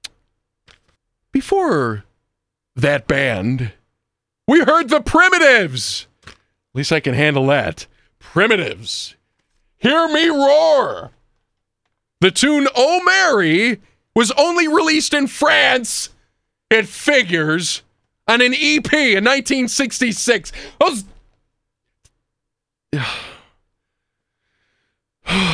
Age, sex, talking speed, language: 40-59, male, 80 wpm, English